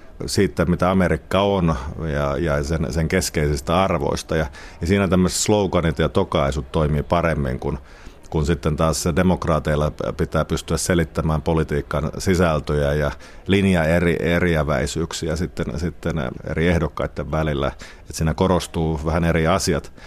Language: Finnish